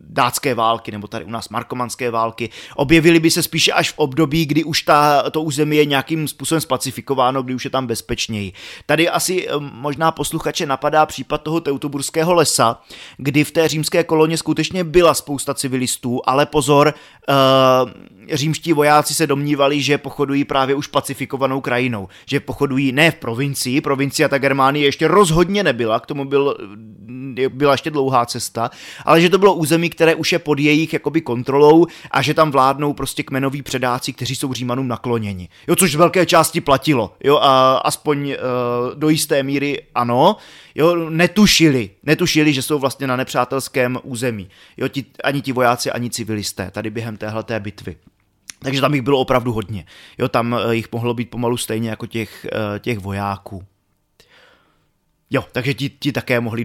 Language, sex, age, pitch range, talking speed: Czech, male, 20-39, 120-155 Hz, 165 wpm